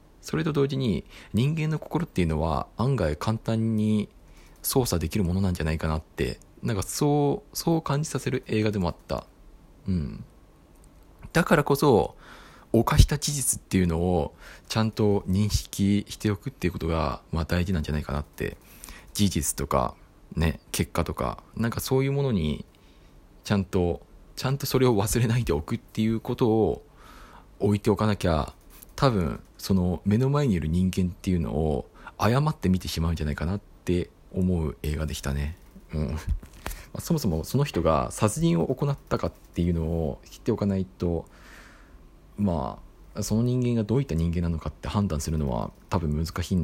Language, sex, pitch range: Japanese, male, 80-110 Hz